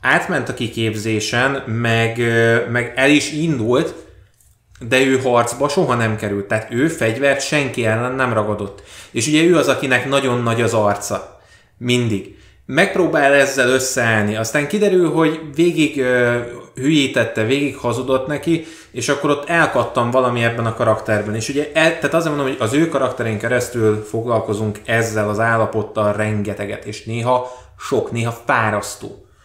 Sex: male